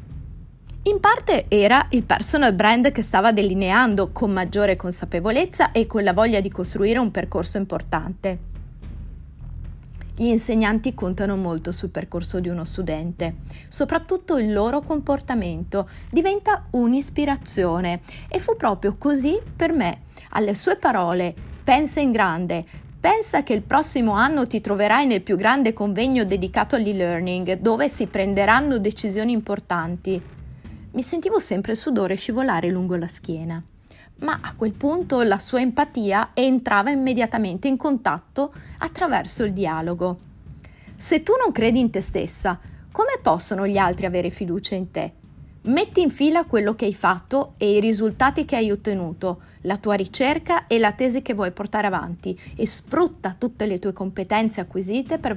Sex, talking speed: female, 145 wpm